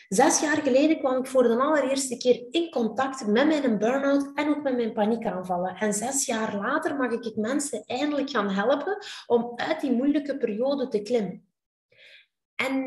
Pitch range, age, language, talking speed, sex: 220-275 Hz, 20-39, Dutch, 175 wpm, female